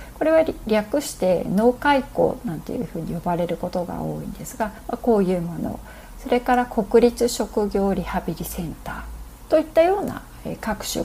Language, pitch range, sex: Japanese, 170-240 Hz, female